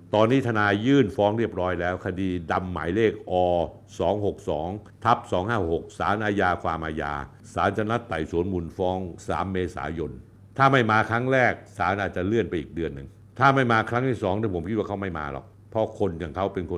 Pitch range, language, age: 90-120 Hz, Thai, 60-79